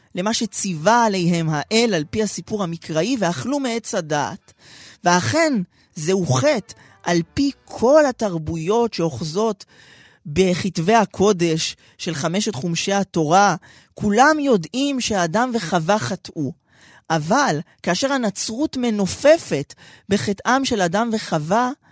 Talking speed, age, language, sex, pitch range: 105 wpm, 30-49, Hebrew, male, 175-235 Hz